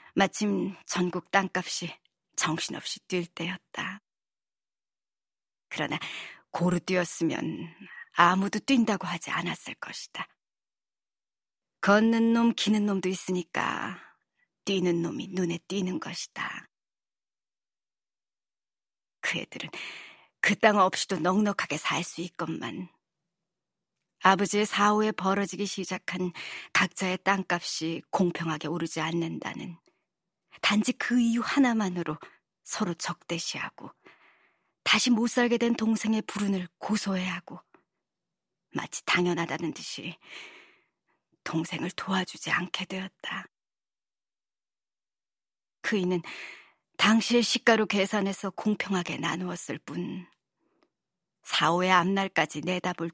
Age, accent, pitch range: 40-59, native, 175-210 Hz